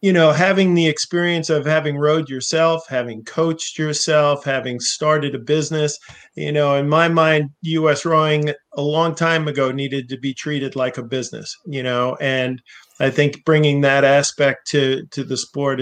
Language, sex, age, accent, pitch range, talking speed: English, male, 40-59, American, 135-160 Hz, 175 wpm